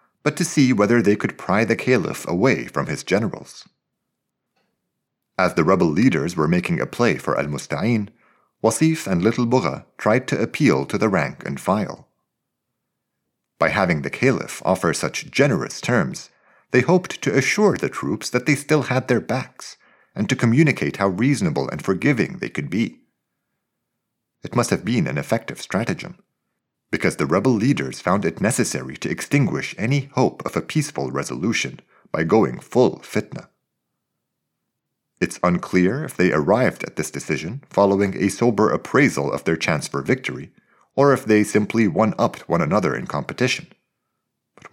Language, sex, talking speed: English, male, 160 wpm